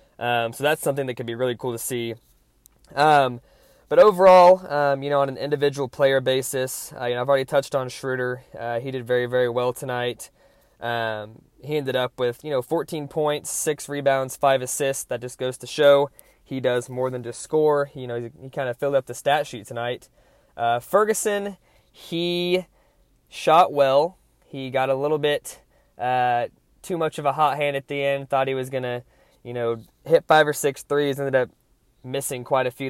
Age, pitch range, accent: 20-39, 125-150 Hz, American